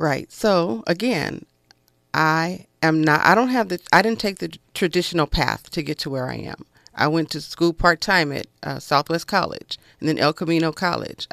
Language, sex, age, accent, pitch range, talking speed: English, female, 40-59, American, 155-190 Hz, 195 wpm